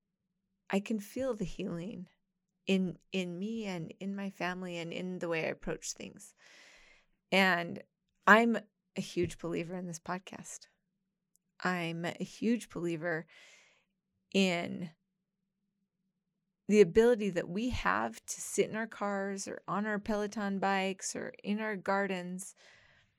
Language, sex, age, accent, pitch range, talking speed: English, female, 30-49, American, 175-195 Hz, 130 wpm